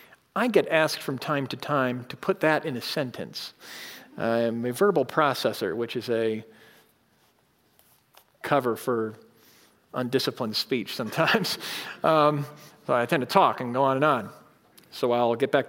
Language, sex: English, male